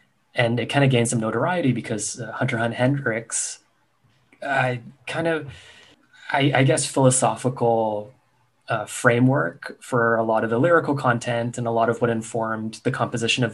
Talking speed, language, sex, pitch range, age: 165 wpm, English, male, 115-125 Hz, 20-39